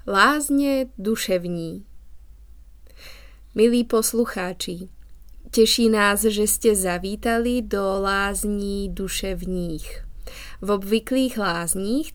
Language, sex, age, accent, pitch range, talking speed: Czech, female, 20-39, native, 190-230 Hz, 75 wpm